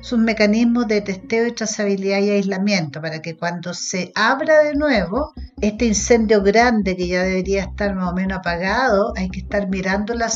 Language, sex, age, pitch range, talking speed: Spanish, female, 50-69, 185-220 Hz, 185 wpm